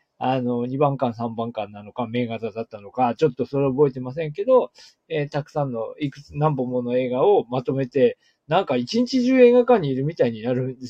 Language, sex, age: Japanese, male, 20-39